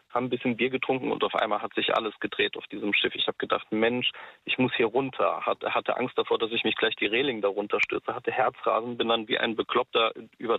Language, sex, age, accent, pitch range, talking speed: German, male, 40-59, German, 115-130 Hz, 250 wpm